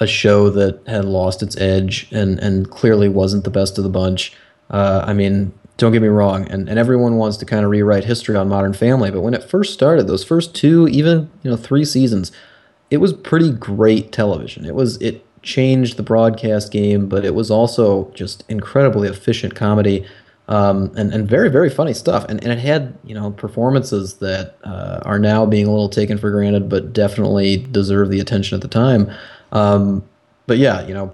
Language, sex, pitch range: English, male, 100-120 Hz